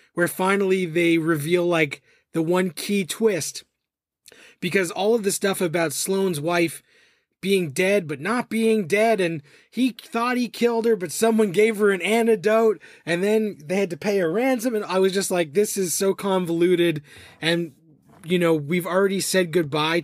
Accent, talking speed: American, 175 wpm